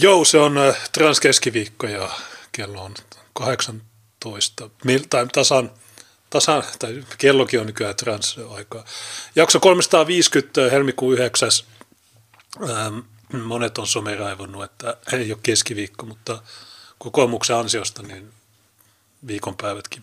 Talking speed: 100 wpm